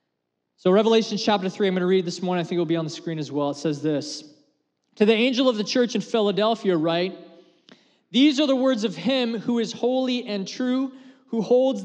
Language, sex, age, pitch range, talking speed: English, male, 20-39, 190-235 Hz, 235 wpm